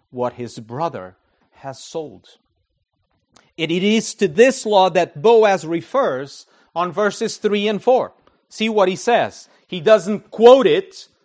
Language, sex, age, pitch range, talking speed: English, male, 40-59, 160-225 Hz, 145 wpm